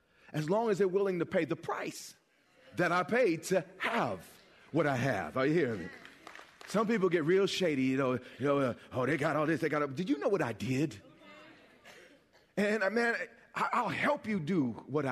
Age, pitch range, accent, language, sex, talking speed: 40-59, 155-200 Hz, American, English, male, 205 wpm